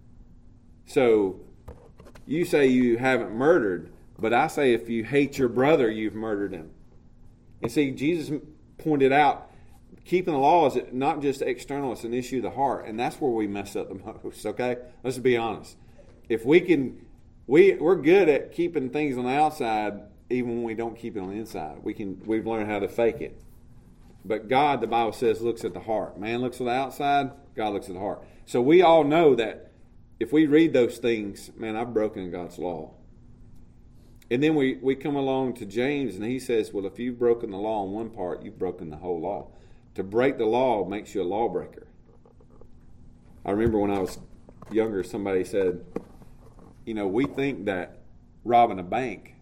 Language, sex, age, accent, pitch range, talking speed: English, male, 40-59, American, 105-135 Hz, 195 wpm